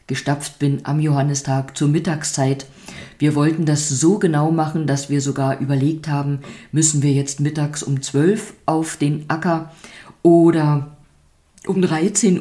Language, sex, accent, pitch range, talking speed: German, female, German, 135-170 Hz, 145 wpm